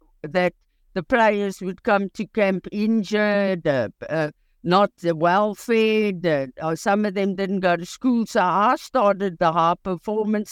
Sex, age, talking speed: female, 60-79, 155 wpm